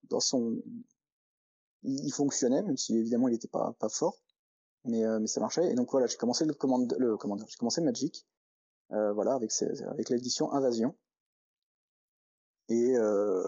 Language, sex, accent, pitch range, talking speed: French, male, French, 115-135 Hz, 125 wpm